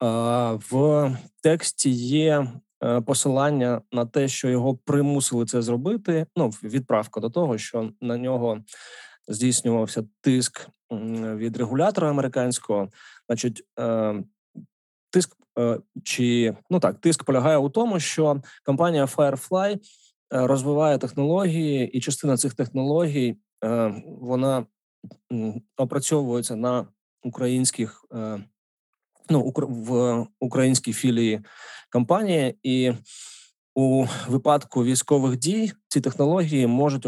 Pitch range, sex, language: 115-145 Hz, male, Ukrainian